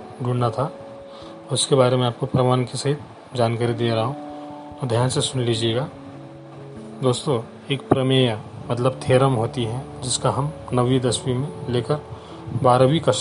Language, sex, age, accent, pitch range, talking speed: Marathi, male, 40-59, native, 115-135 Hz, 145 wpm